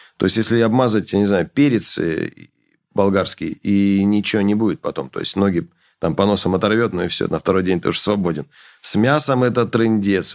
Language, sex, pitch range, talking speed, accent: Russian, male, 100-125 Hz, 205 wpm, native